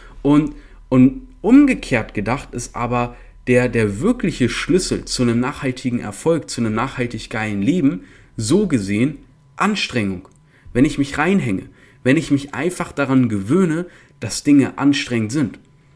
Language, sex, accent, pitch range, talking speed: German, male, German, 120-150 Hz, 135 wpm